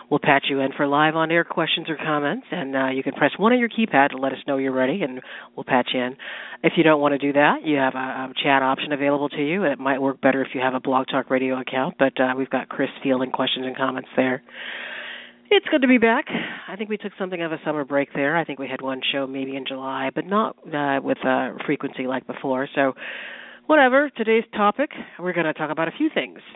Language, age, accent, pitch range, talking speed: English, 40-59, American, 135-170 Hz, 255 wpm